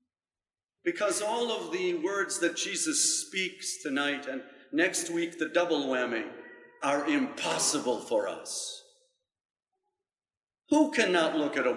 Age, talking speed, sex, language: 50-69, 120 wpm, male, English